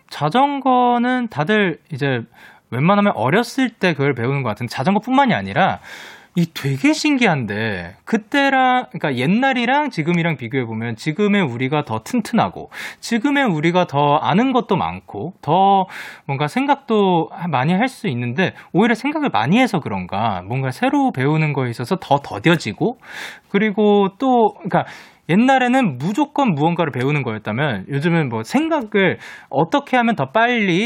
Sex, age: male, 20-39